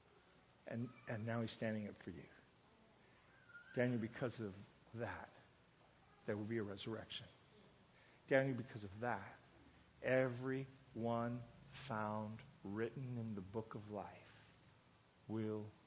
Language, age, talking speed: English, 50-69, 115 wpm